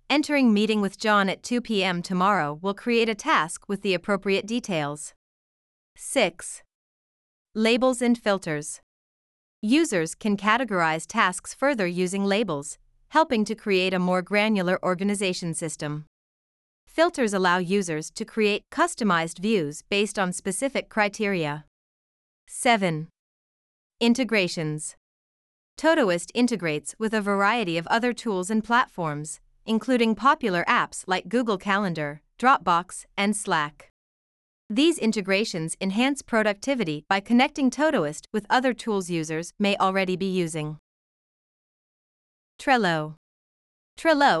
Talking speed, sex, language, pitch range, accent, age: 115 wpm, female, English, 175-230 Hz, American, 30-49